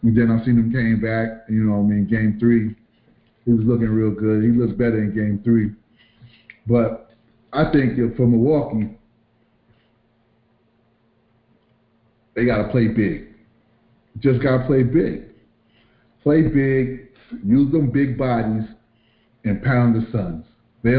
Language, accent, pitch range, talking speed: English, American, 115-130 Hz, 145 wpm